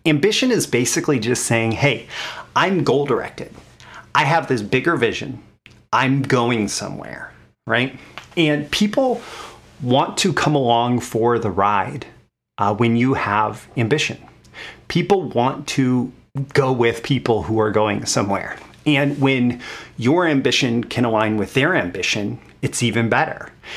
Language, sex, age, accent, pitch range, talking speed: English, male, 30-49, American, 115-145 Hz, 135 wpm